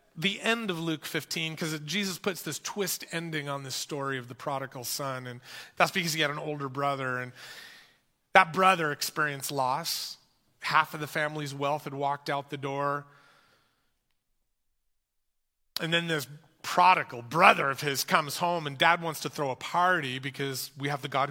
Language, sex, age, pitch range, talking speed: English, male, 30-49, 135-170 Hz, 175 wpm